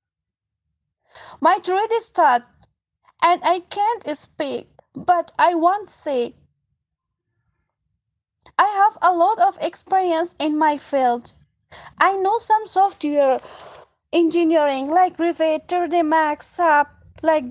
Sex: female